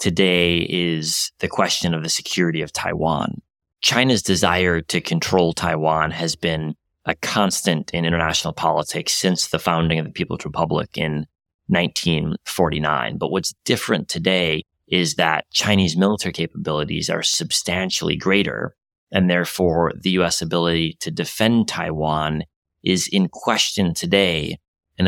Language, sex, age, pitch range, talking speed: English, male, 30-49, 80-95 Hz, 130 wpm